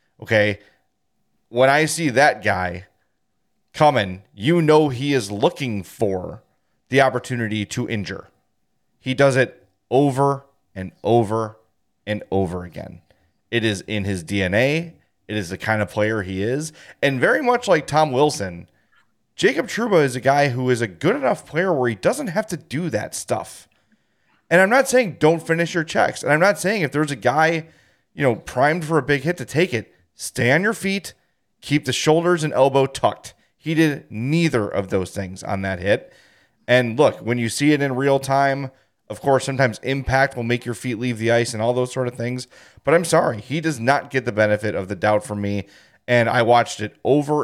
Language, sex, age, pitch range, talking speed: English, male, 30-49, 105-145 Hz, 195 wpm